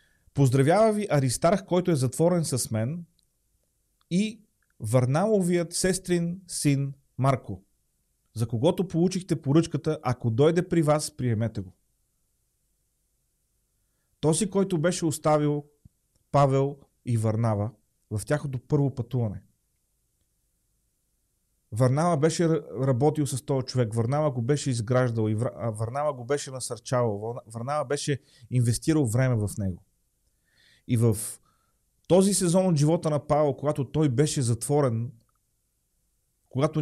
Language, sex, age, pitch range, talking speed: Bulgarian, male, 40-59, 120-155 Hz, 110 wpm